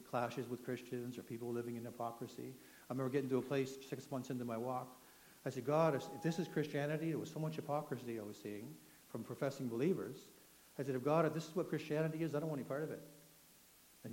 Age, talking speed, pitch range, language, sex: 60-79, 235 wpm, 115-150 Hz, English, male